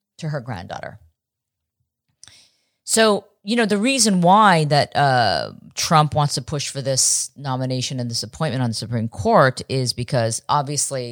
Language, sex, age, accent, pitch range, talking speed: English, female, 40-59, American, 120-150 Hz, 145 wpm